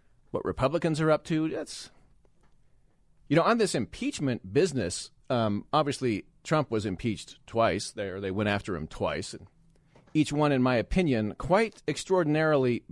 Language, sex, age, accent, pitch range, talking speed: English, male, 40-59, American, 125-165 Hz, 145 wpm